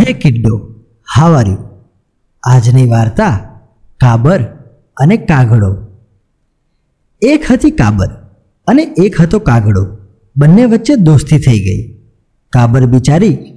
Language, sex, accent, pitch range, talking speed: Gujarati, male, native, 120-175 Hz, 80 wpm